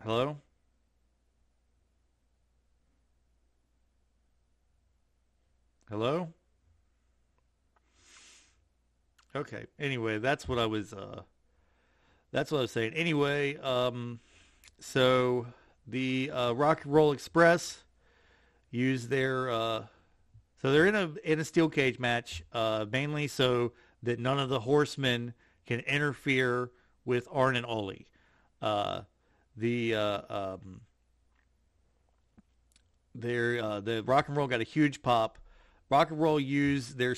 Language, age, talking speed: English, 50-69, 110 wpm